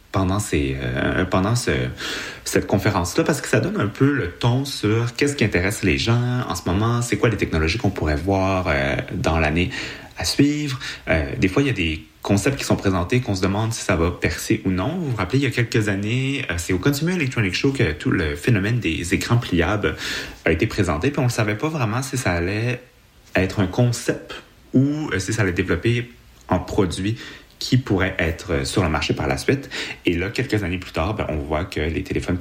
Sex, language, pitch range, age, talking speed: male, French, 90-120 Hz, 30-49, 225 wpm